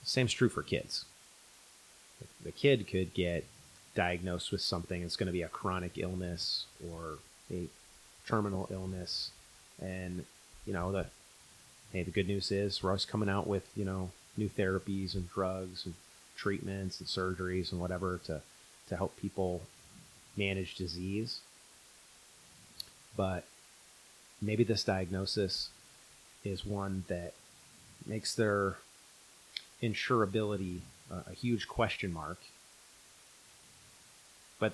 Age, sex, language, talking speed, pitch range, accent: 30-49, male, English, 120 wpm, 90-105 Hz, American